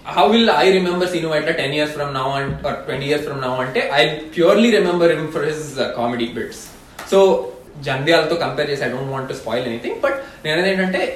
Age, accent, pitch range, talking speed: 20-39, native, 135-185 Hz, 190 wpm